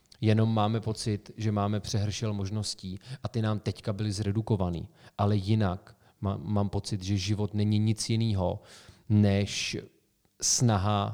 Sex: male